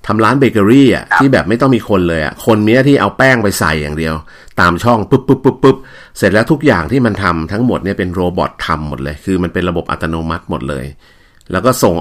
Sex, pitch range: male, 85-115 Hz